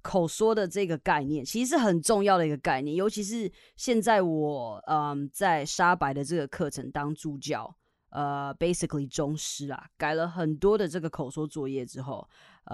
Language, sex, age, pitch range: Chinese, female, 20-39, 145-195 Hz